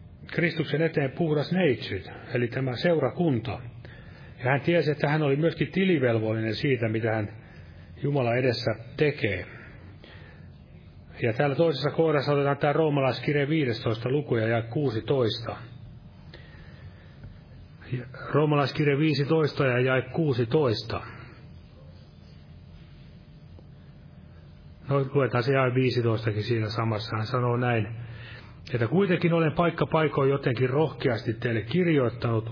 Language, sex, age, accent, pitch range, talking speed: Finnish, male, 30-49, native, 115-150 Hz, 105 wpm